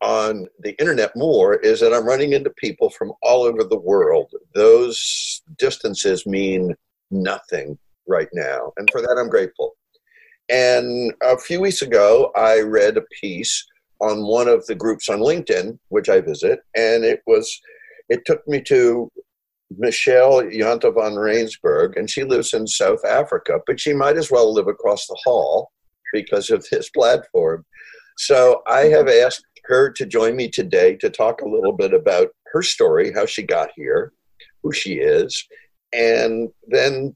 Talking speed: 165 wpm